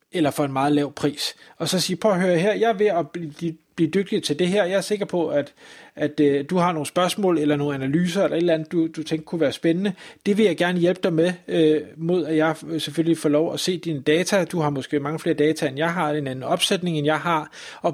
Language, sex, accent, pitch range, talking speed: Danish, male, native, 150-185 Hz, 260 wpm